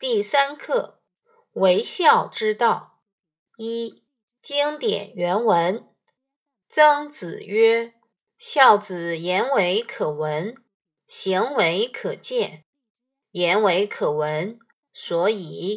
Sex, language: female, Chinese